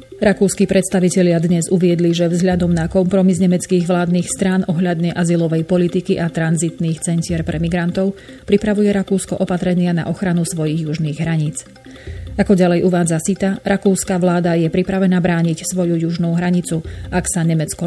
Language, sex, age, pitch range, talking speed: Slovak, female, 30-49, 160-185 Hz, 140 wpm